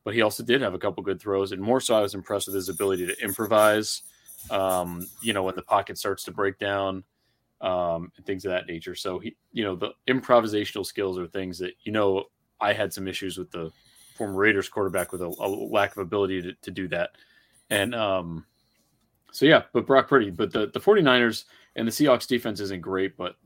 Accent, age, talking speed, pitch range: American, 30-49, 215 wpm, 95-120 Hz